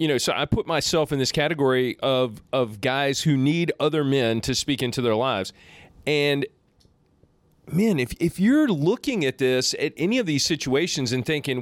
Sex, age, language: male, 40-59, English